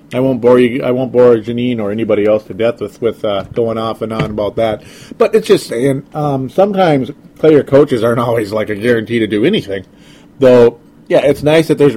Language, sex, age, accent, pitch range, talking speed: English, male, 40-59, American, 110-140 Hz, 220 wpm